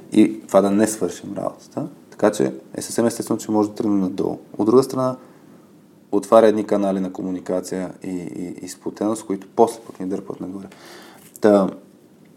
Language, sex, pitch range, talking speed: Bulgarian, male, 95-105 Hz, 165 wpm